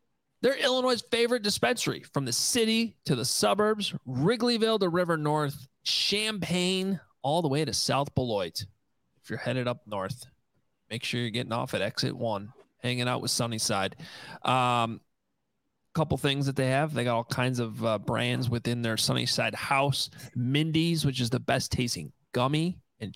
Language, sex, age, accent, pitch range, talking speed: English, male, 30-49, American, 120-155 Hz, 165 wpm